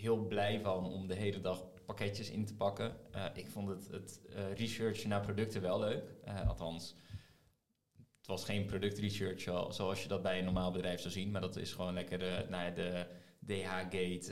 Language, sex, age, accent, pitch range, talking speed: Dutch, male, 20-39, Dutch, 90-105 Hz, 195 wpm